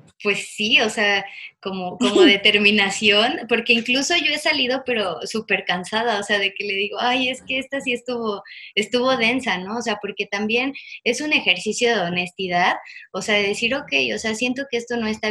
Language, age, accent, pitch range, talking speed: Spanish, 20-39, Mexican, 195-240 Hz, 200 wpm